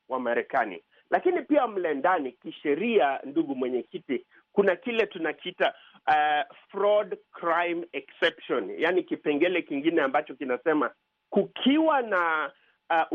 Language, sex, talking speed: Swahili, male, 100 wpm